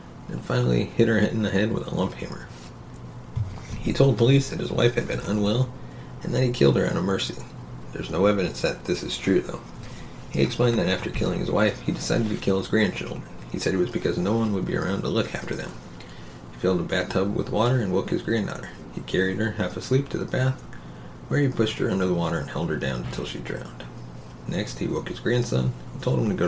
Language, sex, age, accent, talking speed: English, male, 30-49, American, 240 wpm